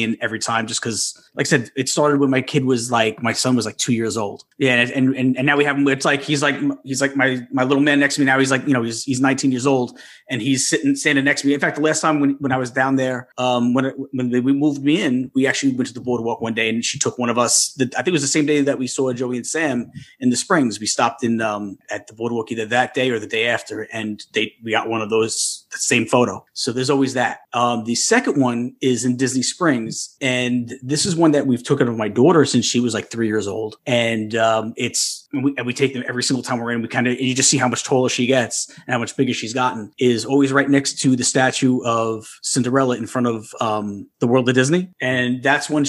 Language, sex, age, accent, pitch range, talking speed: English, male, 30-49, American, 120-140 Hz, 280 wpm